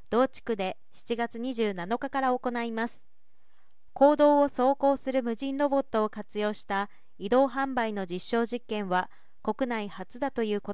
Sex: female